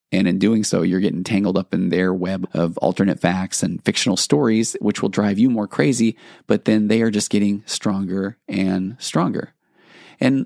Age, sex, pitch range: 30-49, male, 95-110 Hz